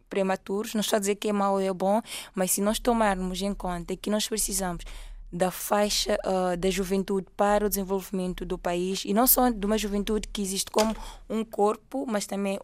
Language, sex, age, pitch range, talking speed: Portuguese, female, 20-39, 185-210 Hz, 205 wpm